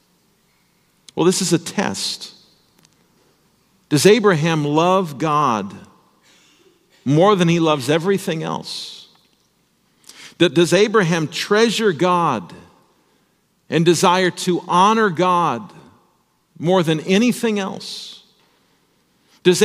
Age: 50-69